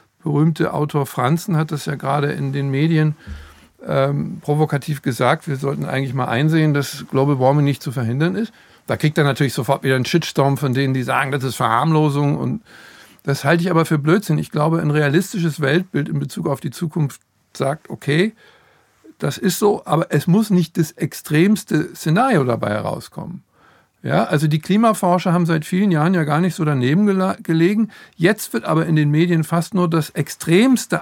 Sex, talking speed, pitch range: male, 185 wpm, 145-175 Hz